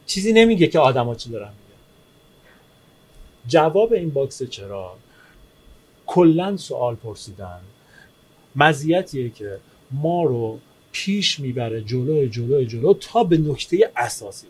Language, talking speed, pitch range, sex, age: Persian, 110 wpm, 120-175 Hz, male, 40-59